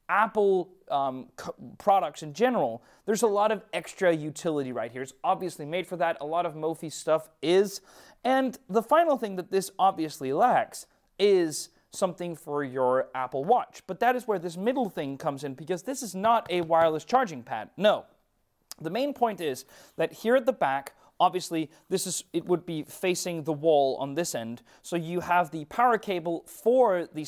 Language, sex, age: English, male, 30-49